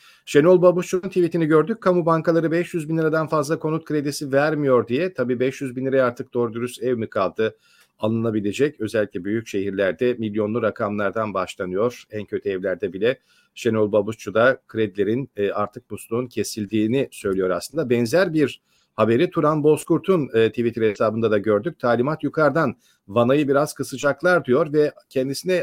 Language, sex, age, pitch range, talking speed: Turkish, male, 40-59, 120-160 Hz, 145 wpm